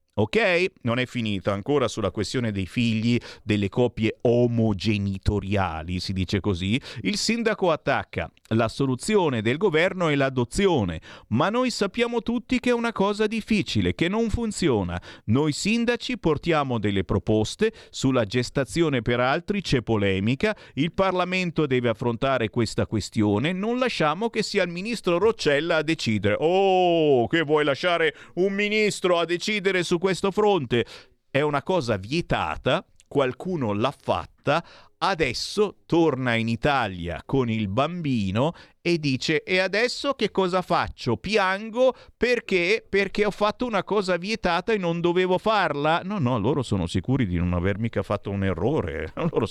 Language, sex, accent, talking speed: Italian, male, native, 145 wpm